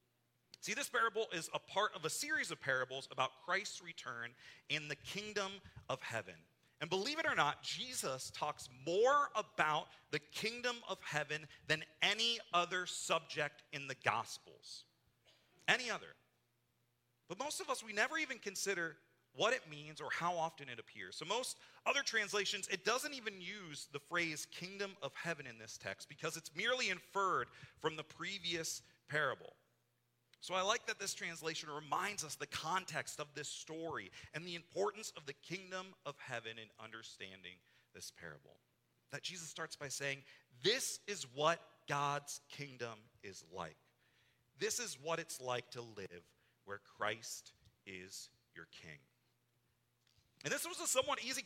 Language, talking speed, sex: English, 160 wpm, male